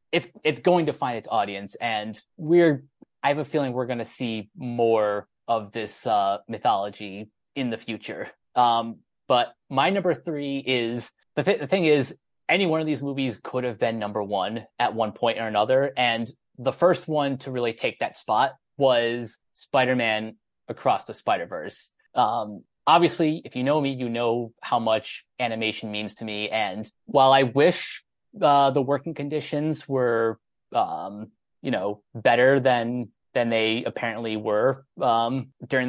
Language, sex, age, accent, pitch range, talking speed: English, male, 20-39, American, 115-140 Hz, 170 wpm